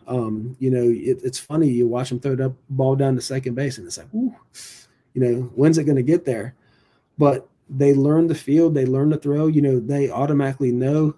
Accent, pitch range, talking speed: American, 120-135 Hz, 230 wpm